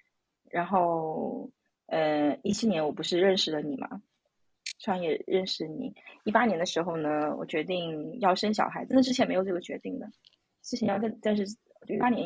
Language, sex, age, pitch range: Chinese, female, 20-39, 180-245 Hz